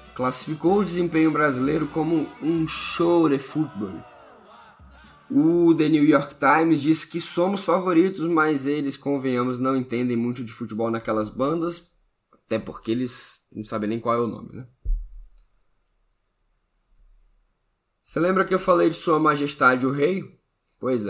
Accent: Brazilian